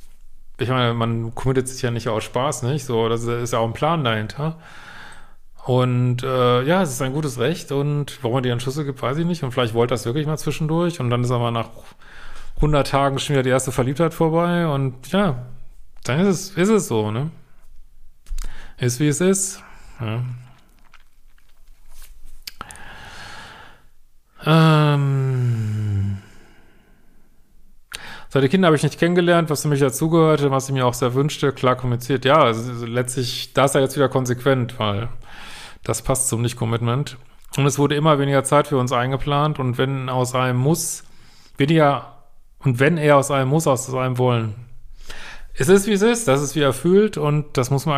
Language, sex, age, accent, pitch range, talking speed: German, male, 40-59, German, 125-150 Hz, 175 wpm